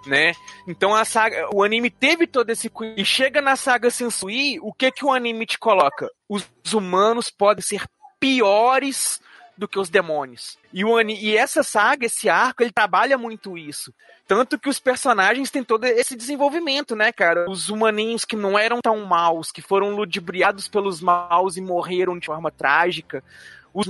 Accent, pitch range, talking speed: Brazilian, 180-235 Hz, 180 wpm